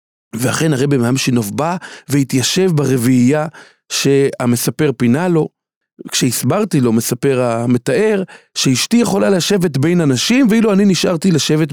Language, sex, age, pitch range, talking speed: Hebrew, male, 40-59, 130-185 Hz, 120 wpm